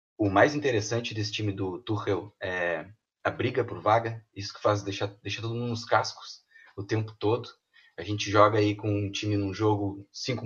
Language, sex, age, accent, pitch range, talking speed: Portuguese, male, 20-39, Brazilian, 100-115 Hz, 195 wpm